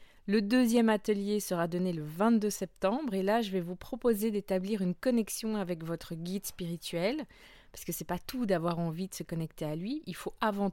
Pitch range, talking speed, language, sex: 175-215 Hz, 200 wpm, French, female